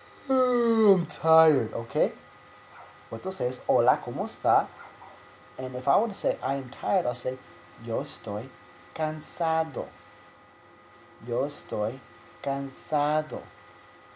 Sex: male